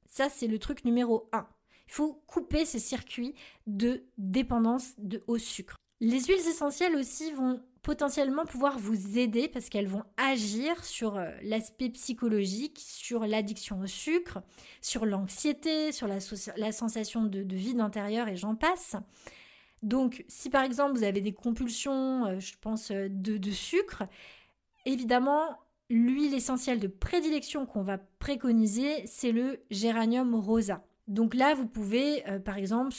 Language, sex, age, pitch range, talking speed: French, female, 20-39, 210-265 Hz, 145 wpm